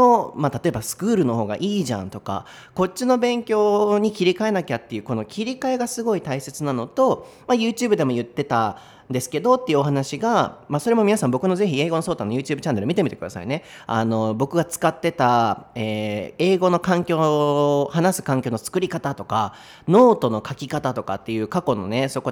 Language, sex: Japanese, male